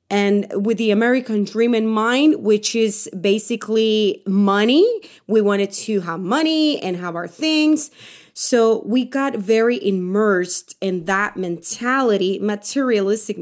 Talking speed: 130 wpm